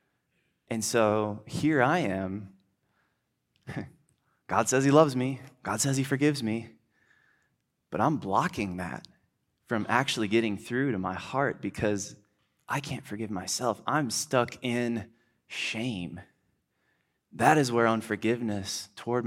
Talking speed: 125 wpm